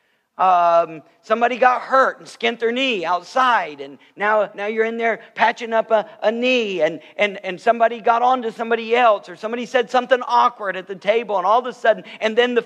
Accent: American